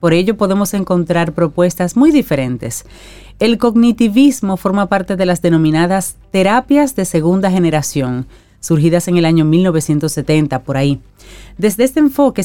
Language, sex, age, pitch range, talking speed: Spanish, female, 40-59, 155-215 Hz, 135 wpm